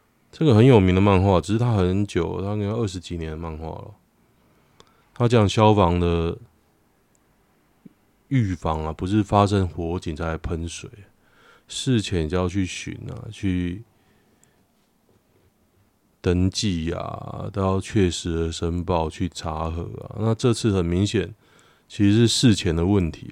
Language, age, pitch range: Chinese, 20-39, 85-110 Hz